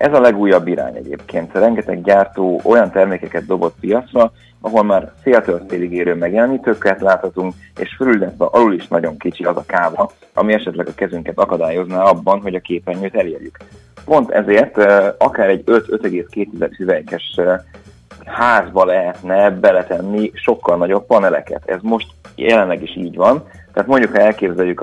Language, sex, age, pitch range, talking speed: Hungarian, male, 30-49, 90-100 Hz, 140 wpm